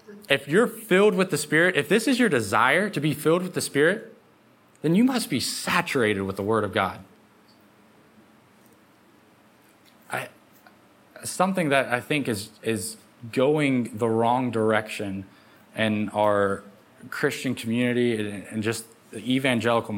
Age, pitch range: 20-39, 110-145 Hz